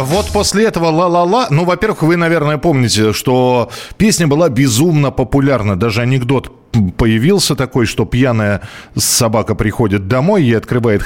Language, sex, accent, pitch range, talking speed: Russian, male, native, 110-160 Hz, 140 wpm